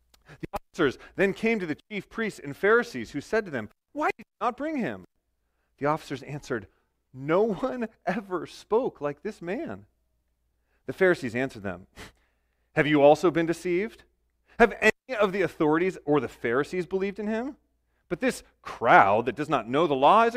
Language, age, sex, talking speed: English, 40-59, male, 170 wpm